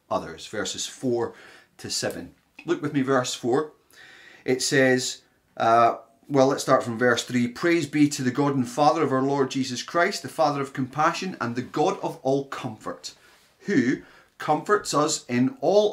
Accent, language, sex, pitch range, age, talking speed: British, English, male, 125-160 Hz, 30-49, 175 wpm